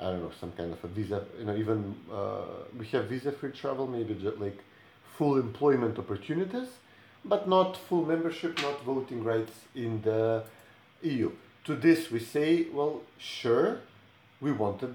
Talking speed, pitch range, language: 160 wpm, 115-150 Hz, English